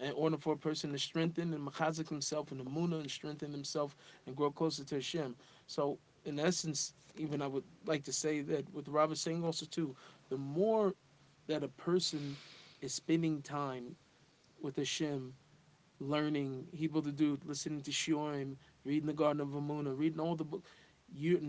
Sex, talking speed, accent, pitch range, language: male, 175 wpm, American, 140-160 Hz, English